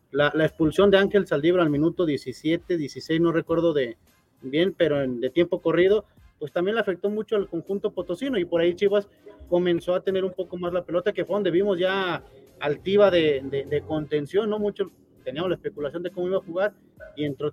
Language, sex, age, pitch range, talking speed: Spanish, male, 30-49, 150-195 Hz, 210 wpm